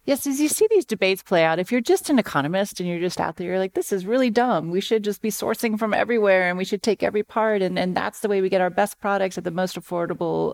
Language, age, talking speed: English, 40-59, 290 wpm